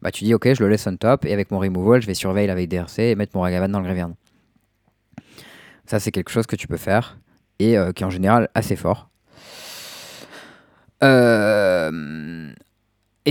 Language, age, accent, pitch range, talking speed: French, 20-39, French, 95-115 Hz, 190 wpm